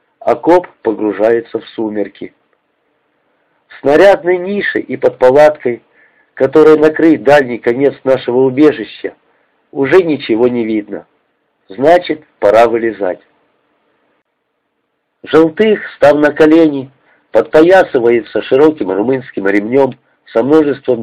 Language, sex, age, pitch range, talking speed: Russian, male, 50-69, 125-170 Hz, 90 wpm